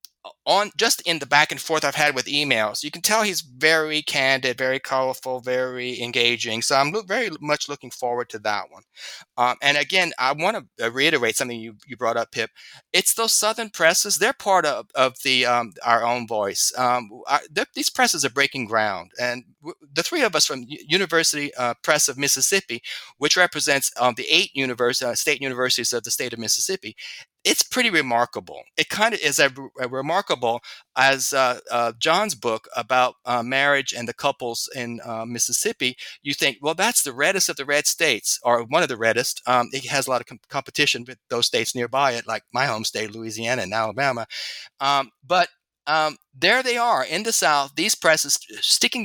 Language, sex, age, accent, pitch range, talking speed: English, male, 30-49, American, 120-155 Hz, 195 wpm